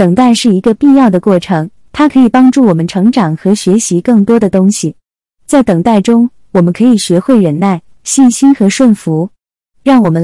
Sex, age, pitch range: female, 20-39, 185-245 Hz